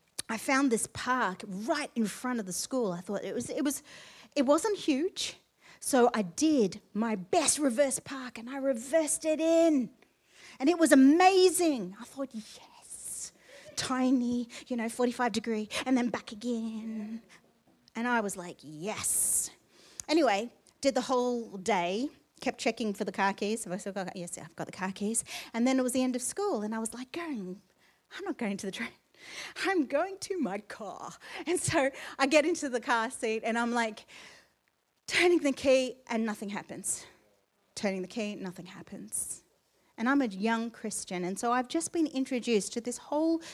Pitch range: 210-275 Hz